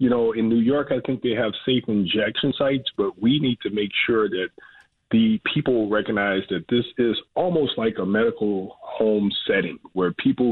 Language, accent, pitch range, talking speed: English, American, 105-150 Hz, 190 wpm